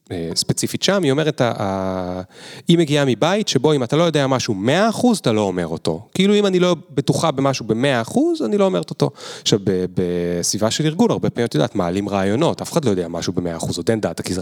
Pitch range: 100-155 Hz